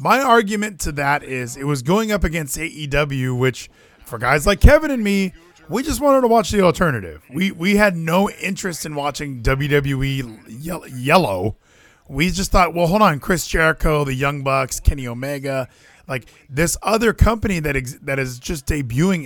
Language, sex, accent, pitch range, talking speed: English, male, American, 135-205 Hz, 180 wpm